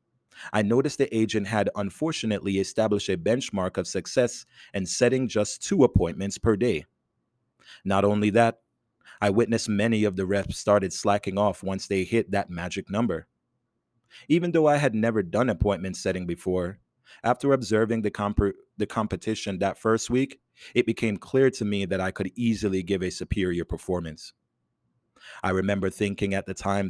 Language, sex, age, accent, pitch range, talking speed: English, male, 30-49, American, 95-115 Hz, 165 wpm